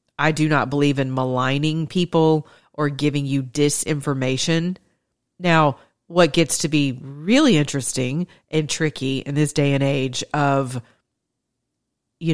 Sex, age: female, 40-59